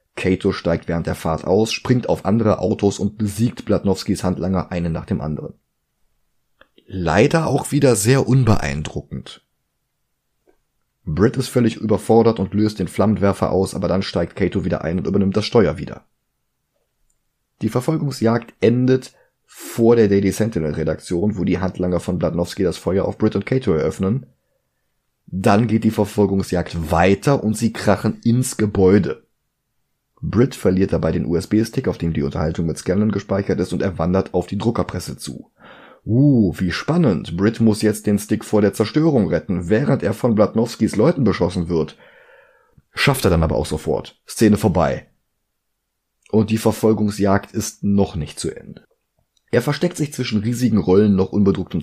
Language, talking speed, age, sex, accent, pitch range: German, 155 wpm, 30-49, male, German, 90-115 Hz